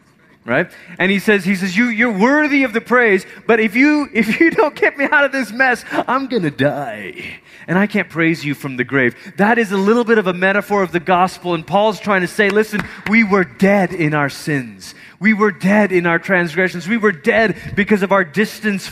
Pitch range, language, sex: 185-260 Hz, English, male